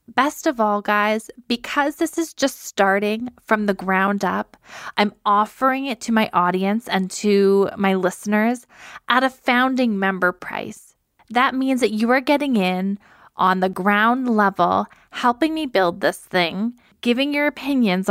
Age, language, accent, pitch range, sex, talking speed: 20-39, English, American, 190-245 Hz, female, 155 wpm